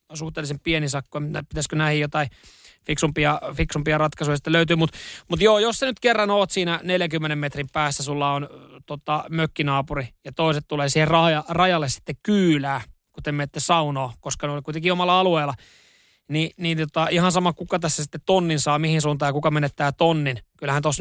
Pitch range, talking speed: 145-175 Hz, 175 wpm